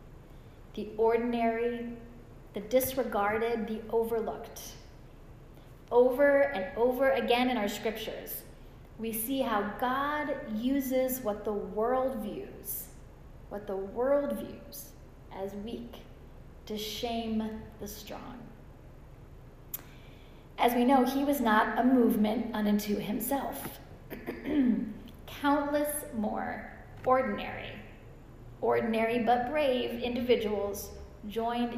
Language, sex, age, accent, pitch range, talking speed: English, female, 40-59, American, 215-255 Hz, 95 wpm